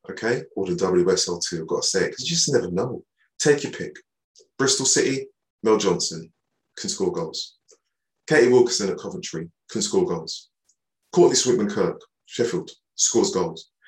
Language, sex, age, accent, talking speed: English, male, 20-39, British, 165 wpm